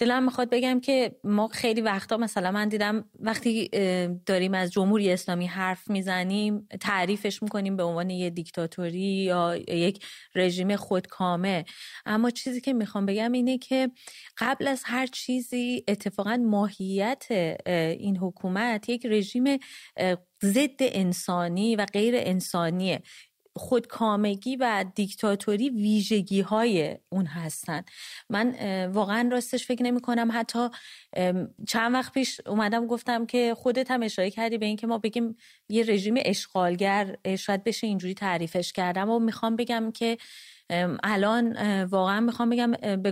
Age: 30-49